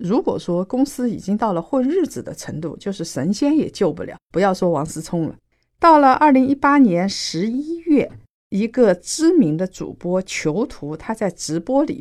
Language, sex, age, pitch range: Chinese, female, 50-69, 175-265 Hz